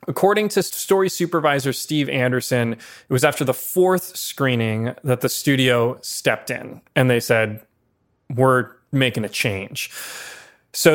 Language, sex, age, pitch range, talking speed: English, male, 20-39, 120-145 Hz, 135 wpm